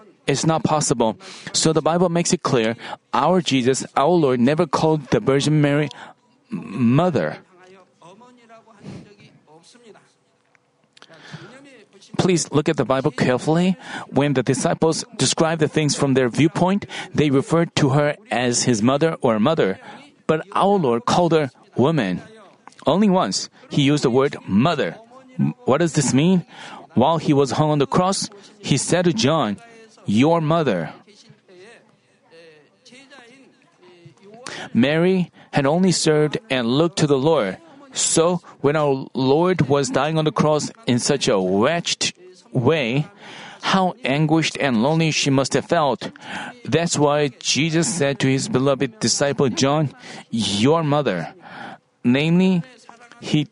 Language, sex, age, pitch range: Korean, male, 40-59, 140-185 Hz